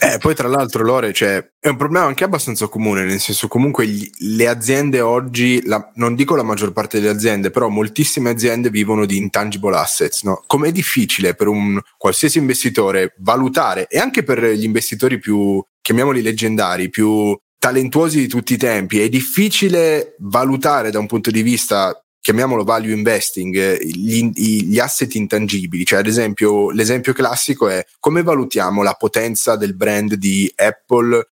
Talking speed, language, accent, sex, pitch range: 160 wpm, Italian, native, male, 105-130 Hz